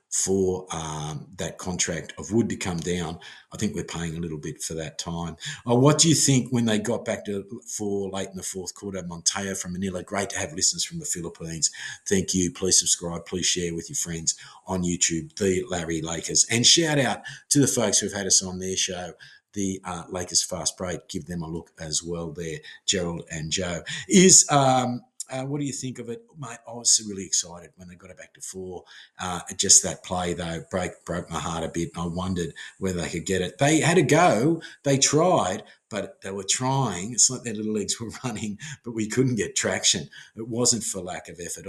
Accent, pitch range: Australian, 85-120 Hz